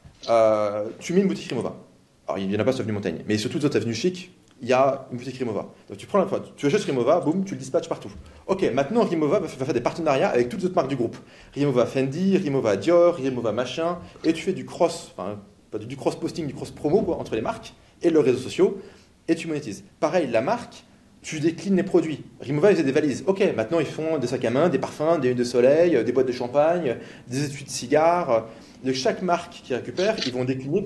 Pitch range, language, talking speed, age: 125-180 Hz, French, 235 wpm, 30-49